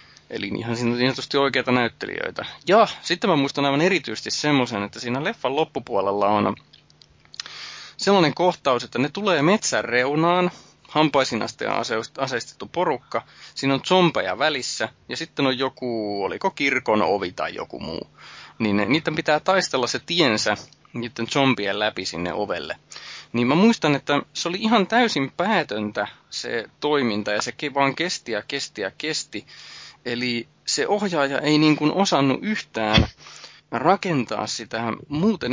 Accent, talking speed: native, 140 wpm